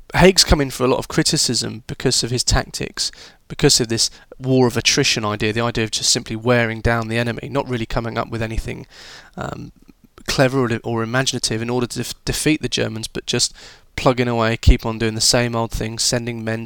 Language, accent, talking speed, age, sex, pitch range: English, British, 215 wpm, 20-39, male, 115-135 Hz